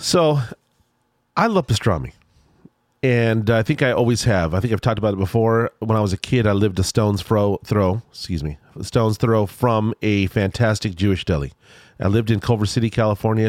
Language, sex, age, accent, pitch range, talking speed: English, male, 40-59, American, 95-120 Hz, 185 wpm